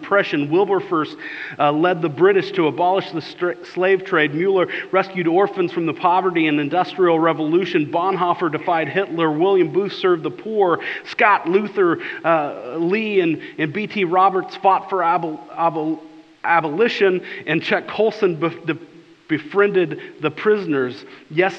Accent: American